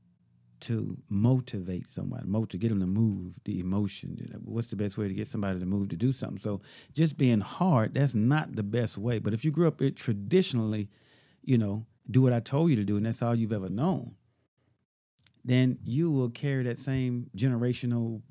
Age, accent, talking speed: 50-69, American, 195 wpm